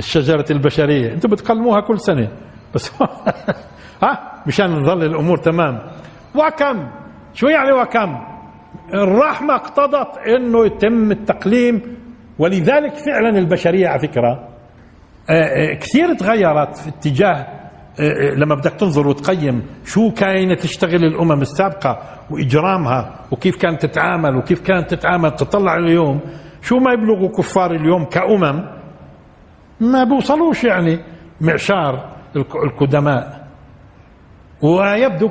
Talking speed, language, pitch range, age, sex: 100 wpm, Arabic, 140-205 Hz, 60-79, male